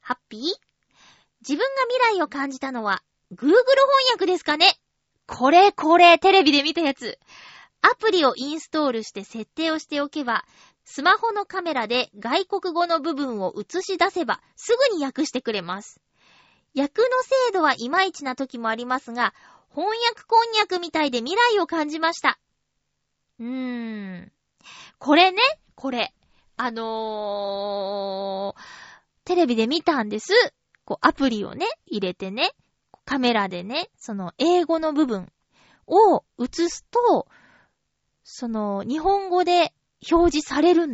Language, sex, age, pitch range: Japanese, female, 20-39, 225-350 Hz